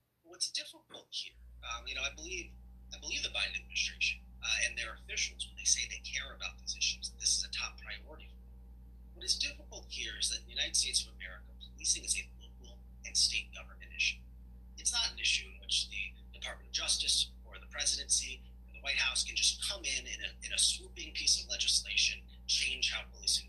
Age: 30-49